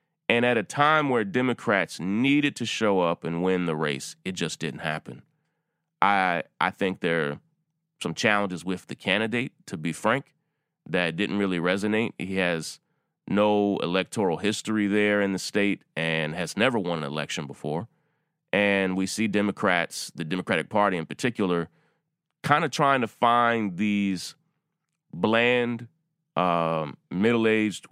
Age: 30-49